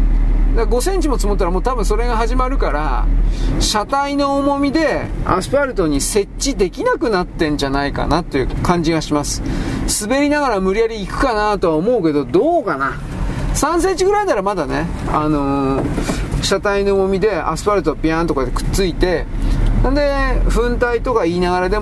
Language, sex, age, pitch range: Japanese, male, 40-59, 145-230 Hz